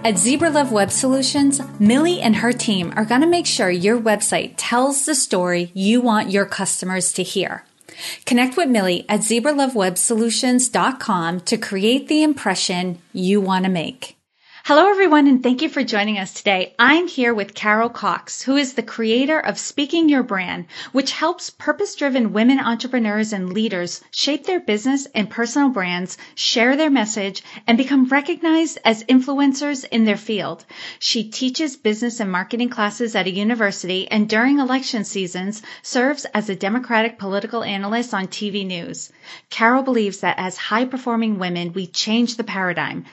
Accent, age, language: American, 30-49, English